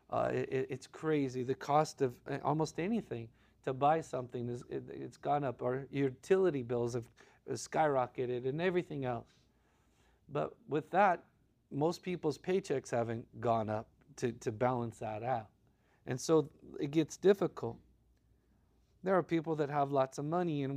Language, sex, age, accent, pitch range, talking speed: English, male, 40-59, American, 125-155 Hz, 145 wpm